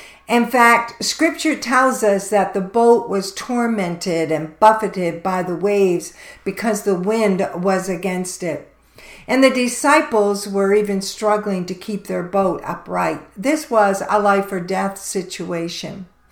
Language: English